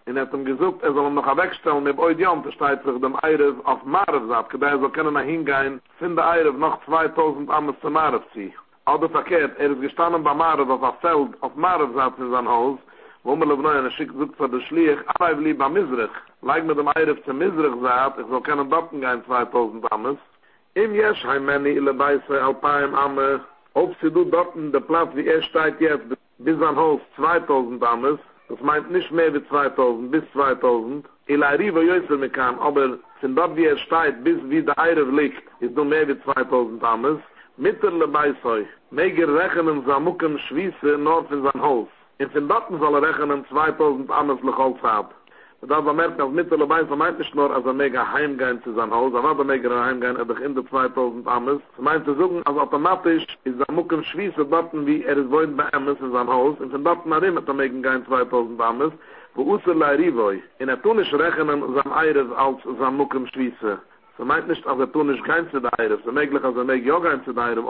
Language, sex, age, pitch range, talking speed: English, male, 60-79, 130-160 Hz, 195 wpm